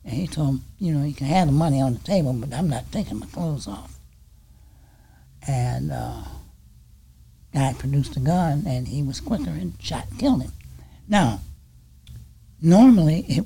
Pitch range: 105-160 Hz